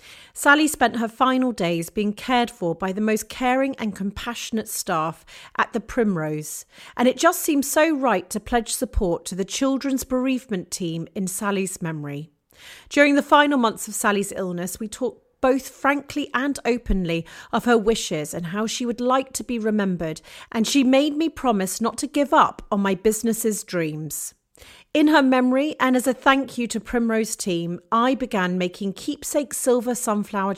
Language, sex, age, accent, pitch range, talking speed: English, female, 40-59, British, 190-260 Hz, 175 wpm